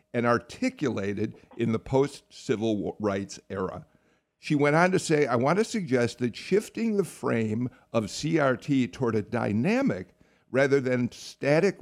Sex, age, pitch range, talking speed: male, 50-69, 115-150 Hz, 140 wpm